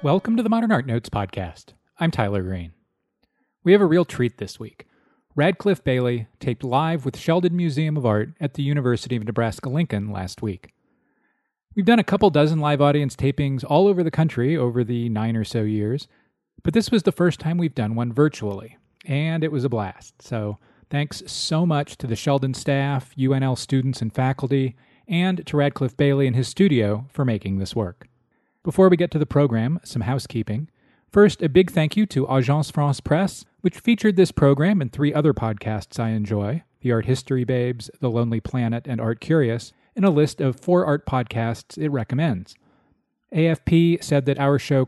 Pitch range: 115-165 Hz